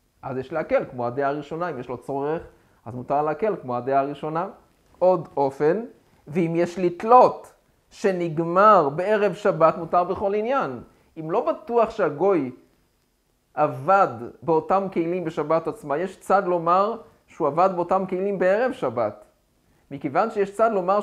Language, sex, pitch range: Hebrew, male, 170-205 Hz